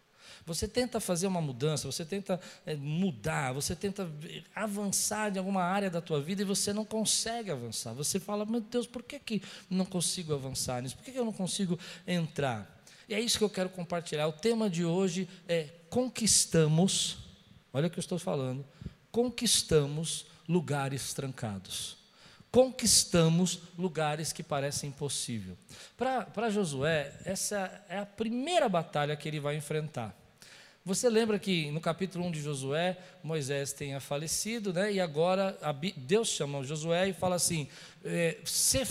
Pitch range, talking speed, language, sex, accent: 160-225 Hz, 155 wpm, Portuguese, male, Brazilian